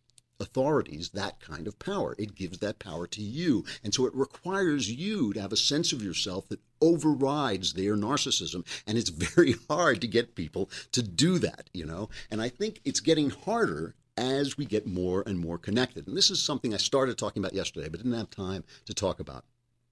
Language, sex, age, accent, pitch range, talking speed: English, male, 50-69, American, 95-135 Hz, 200 wpm